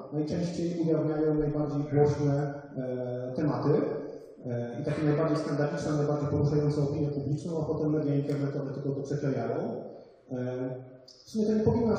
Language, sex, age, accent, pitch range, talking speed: Polish, male, 30-49, native, 140-160 Hz, 140 wpm